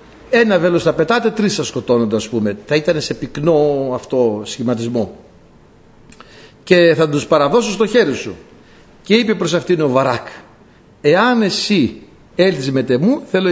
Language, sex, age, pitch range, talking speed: Greek, male, 60-79, 145-225 Hz, 140 wpm